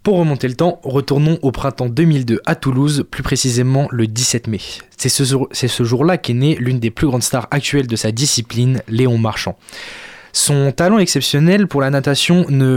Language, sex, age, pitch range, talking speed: French, male, 20-39, 120-145 Hz, 180 wpm